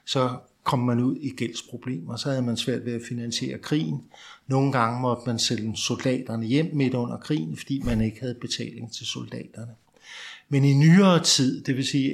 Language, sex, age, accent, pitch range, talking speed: Danish, male, 60-79, native, 120-145 Hz, 190 wpm